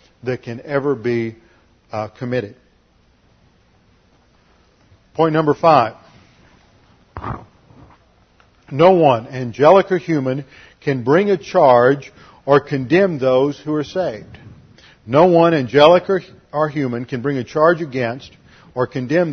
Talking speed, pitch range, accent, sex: 110 wpm, 125-160 Hz, American, male